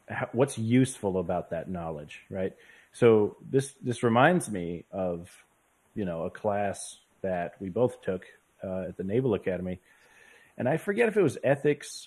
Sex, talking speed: male, 160 wpm